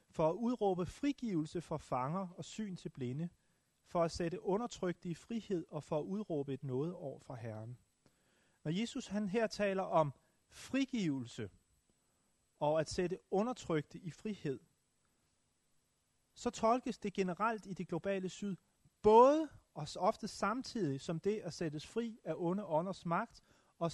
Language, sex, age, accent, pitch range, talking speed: Danish, male, 30-49, native, 145-200 Hz, 150 wpm